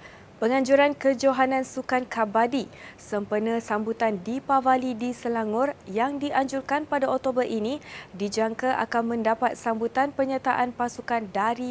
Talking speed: 115 wpm